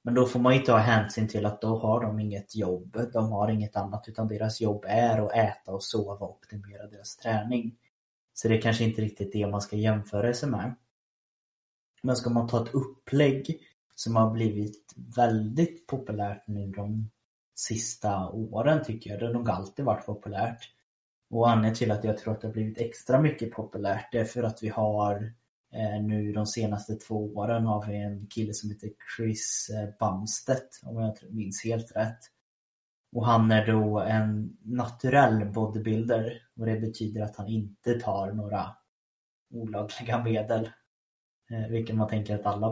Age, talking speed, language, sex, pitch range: 20-39, 175 wpm, Swedish, male, 105-115 Hz